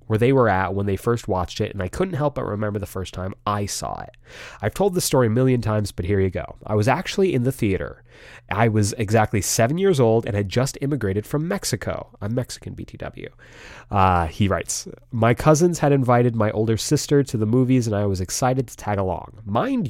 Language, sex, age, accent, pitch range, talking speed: English, male, 30-49, American, 100-125 Hz, 225 wpm